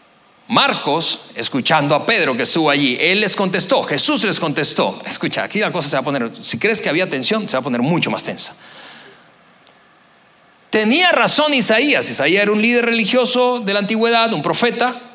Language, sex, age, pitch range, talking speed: Spanish, male, 40-59, 180-235 Hz, 180 wpm